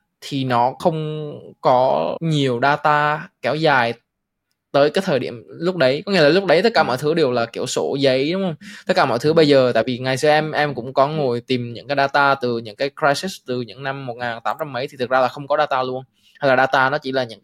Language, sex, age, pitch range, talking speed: Vietnamese, male, 20-39, 125-150 Hz, 250 wpm